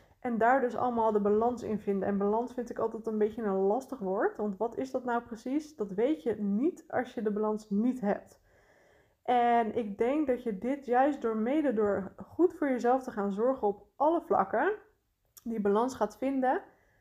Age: 20-39